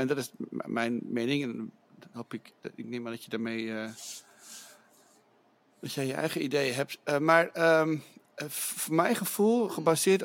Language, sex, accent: English, male, Dutch